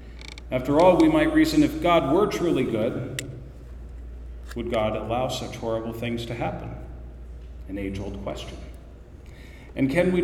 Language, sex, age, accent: English, male, 40-59, American